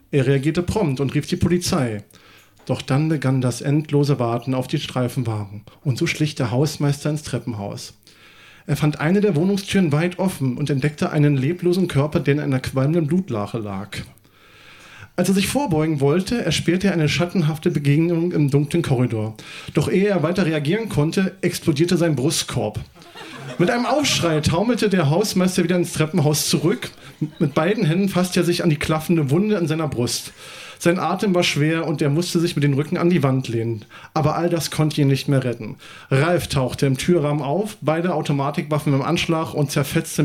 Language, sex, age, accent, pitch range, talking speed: German, male, 40-59, German, 135-175 Hz, 180 wpm